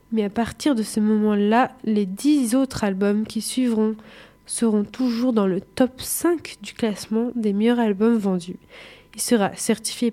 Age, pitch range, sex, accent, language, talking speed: 20-39, 210-240 Hz, female, French, French, 160 wpm